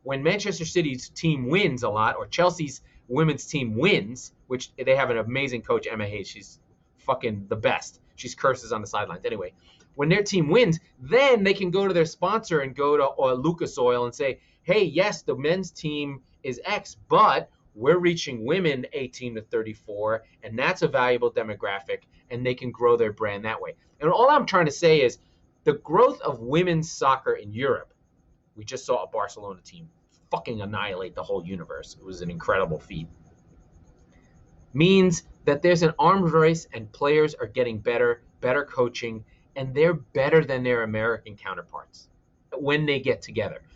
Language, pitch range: English, 125-190 Hz